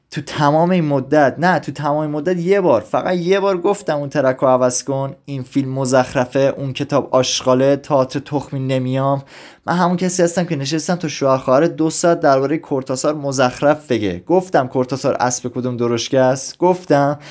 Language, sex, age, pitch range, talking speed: Persian, male, 20-39, 115-150 Hz, 165 wpm